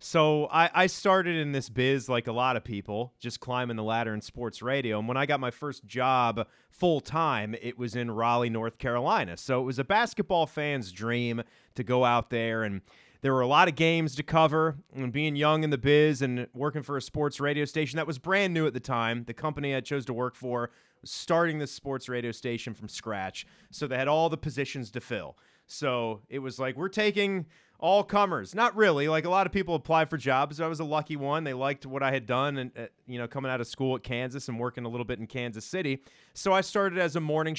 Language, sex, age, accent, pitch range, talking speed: English, male, 30-49, American, 120-155 Hz, 240 wpm